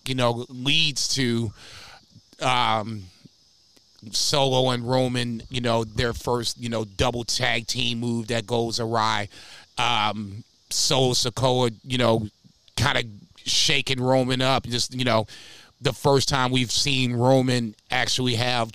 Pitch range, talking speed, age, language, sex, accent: 115-130 Hz, 135 wpm, 30-49, English, male, American